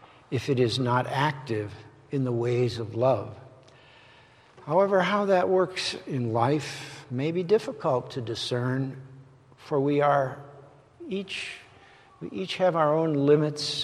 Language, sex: English, male